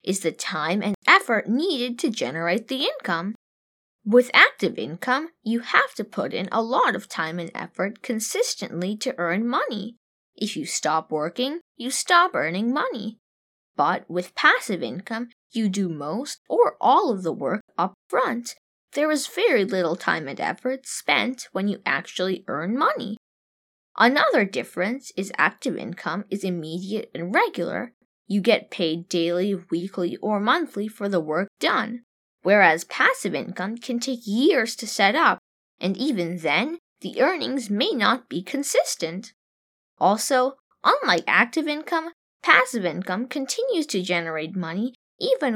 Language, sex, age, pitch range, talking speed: English, female, 10-29, 185-255 Hz, 145 wpm